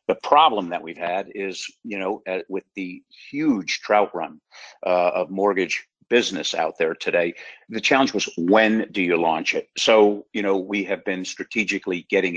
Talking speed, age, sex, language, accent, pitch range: 175 wpm, 50-69, male, English, American, 95-120 Hz